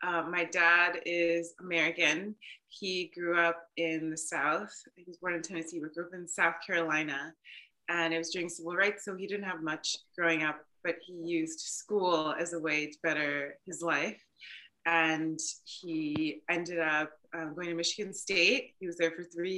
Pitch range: 165-185 Hz